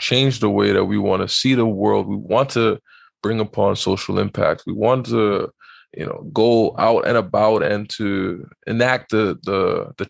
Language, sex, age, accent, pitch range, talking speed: English, male, 20-39, American, 100-115 Hz, 190 wpm